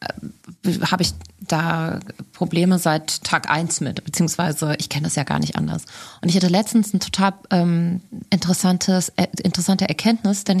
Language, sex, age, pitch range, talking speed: German, female, 30-49, 175-220 Hz, 160 wpm